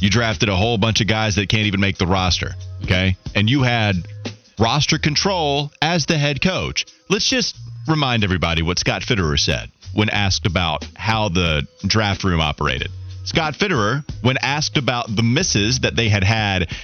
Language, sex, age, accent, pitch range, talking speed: English, male, 30-49, American, 105-170 Hz, 180 wpm